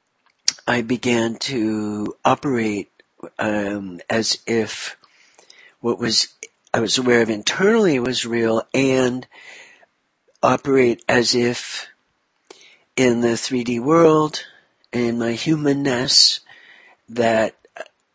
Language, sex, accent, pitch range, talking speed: English, male, American, 115-165 Hz, 95 wpm